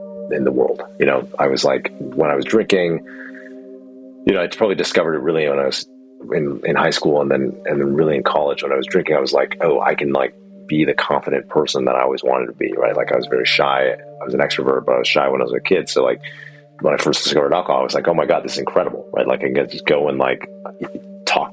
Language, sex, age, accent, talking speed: English, male, 40-59, American, 270 wpm